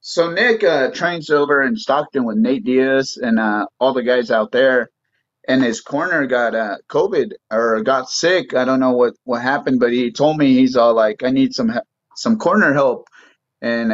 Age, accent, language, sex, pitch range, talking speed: 30-49, American, English, male, 130-195 Hz, 200 wpm